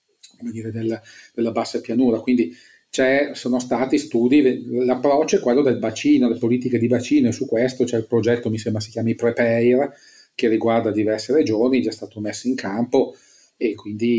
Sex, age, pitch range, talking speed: male, 40-59, 115-130 Hz, 180 wpm